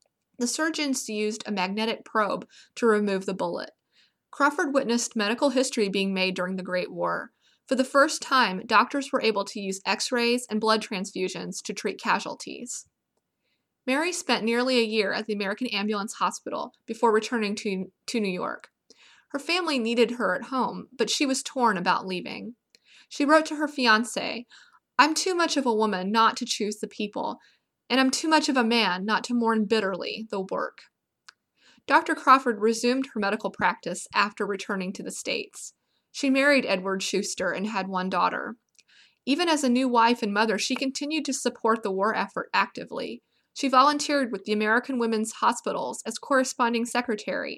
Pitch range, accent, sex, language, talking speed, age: 205-265 Hz, American, female, English, 175 wpm, 20-39